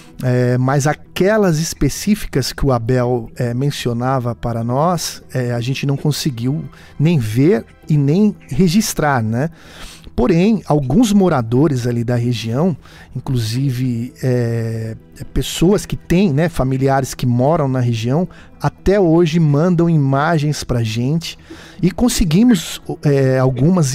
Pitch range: 130-175 Hz